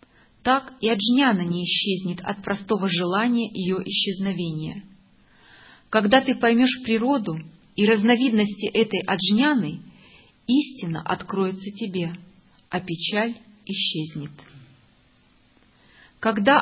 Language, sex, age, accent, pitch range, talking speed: Russian, female, 40-59, native, 180-245 Hz, 90 wpm